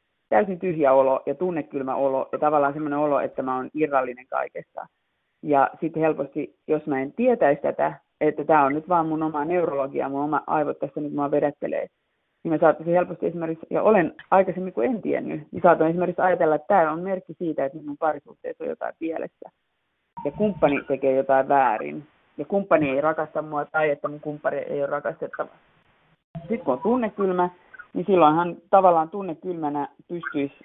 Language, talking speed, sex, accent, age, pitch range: Finnish, 180 wpm, female, native, 30-49, 140-170 Hz